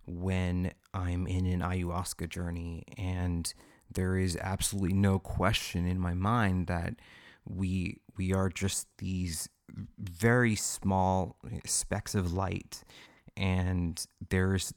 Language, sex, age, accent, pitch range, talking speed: English, male, 30-49, American, 90-100 Hz, 115 wpm